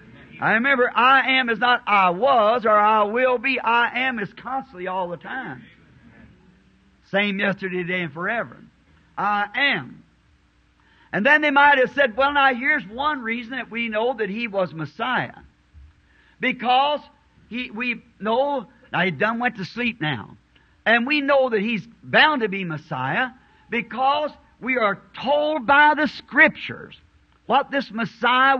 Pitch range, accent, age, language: 195-280 Hz, American, 50-69, English